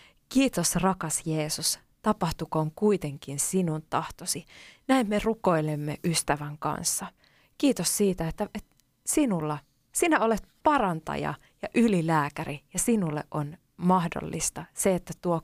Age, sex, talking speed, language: 20-39, female, 115 wpm, Finnish